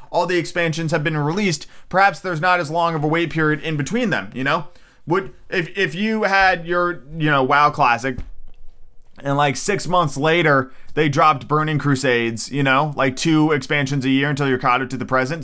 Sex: male